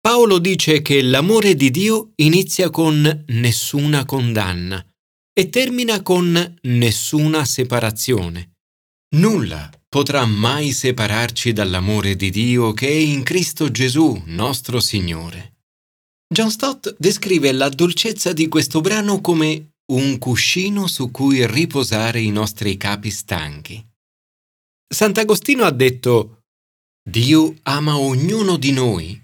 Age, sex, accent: 40-59, male, native